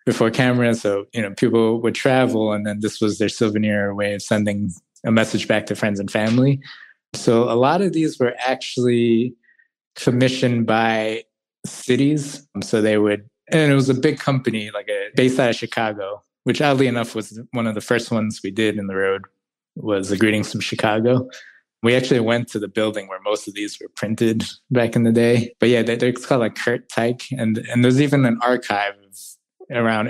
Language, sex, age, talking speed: English, male, 20-39, 200 wpm